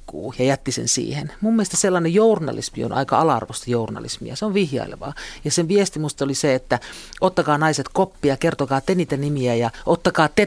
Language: Finnish